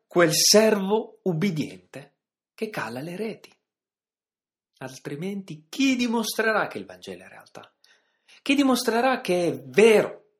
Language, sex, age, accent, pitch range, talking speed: Italian, male, 30-49, native, 140-225 Hz, 120 wpm